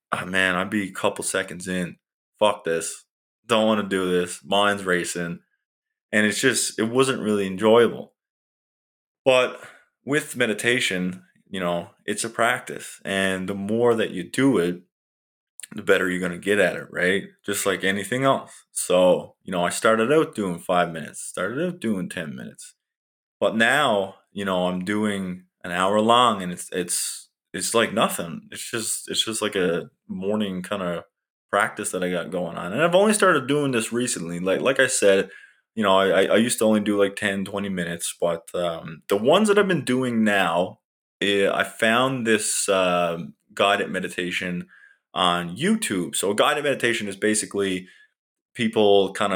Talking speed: 175 wpm